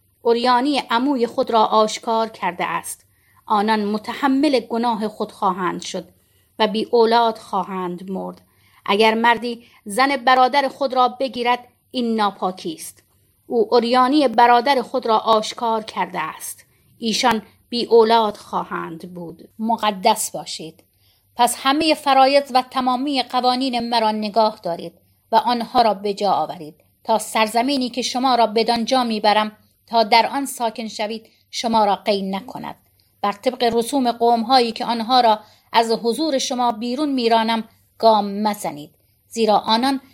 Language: Persian